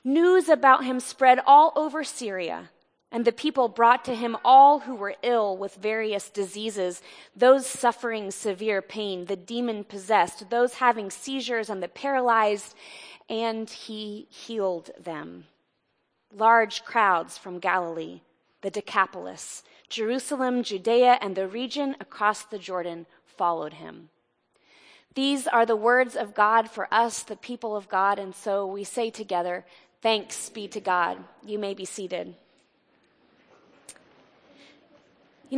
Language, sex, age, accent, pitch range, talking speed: English, female, 30-49, American, 200-255 Hz, 130 wpm